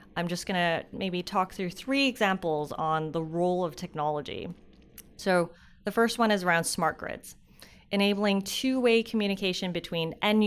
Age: 30-49